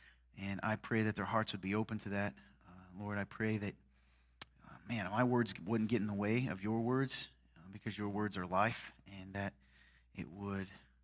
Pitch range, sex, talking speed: 100-140 Hz, male, 205 wpm